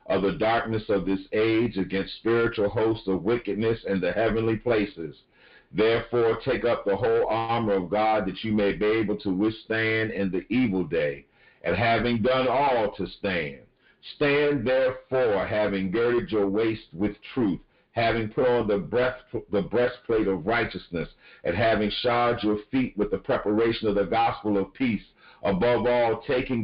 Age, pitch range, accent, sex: 50-69, 105-130 Hz, American, male